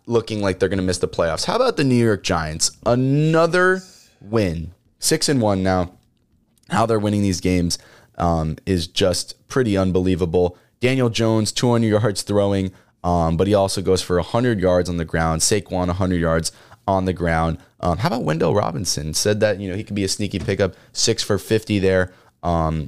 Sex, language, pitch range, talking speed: male, English, 95-120 Hz, 190 wpm